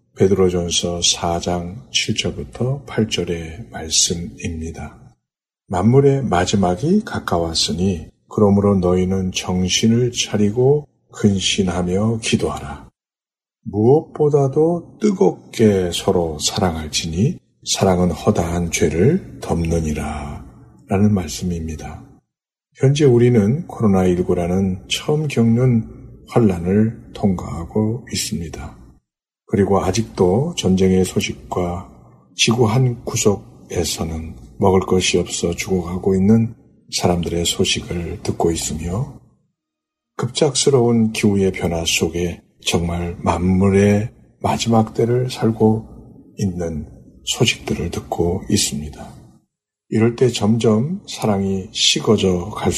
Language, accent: Korean, native